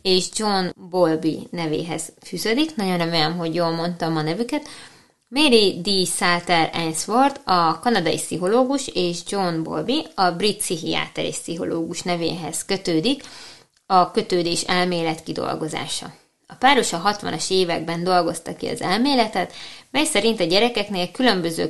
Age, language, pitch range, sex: 20-39, Hungarian, 170-210 Hz, female